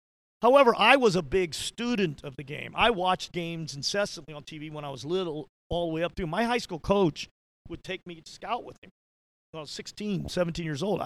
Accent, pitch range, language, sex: American, 150-185 Hz, English, male